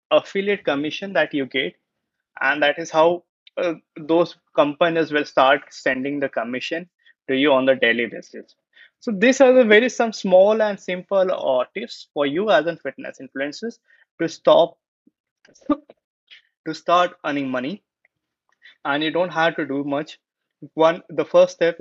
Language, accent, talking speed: English, Indian, 155 wpm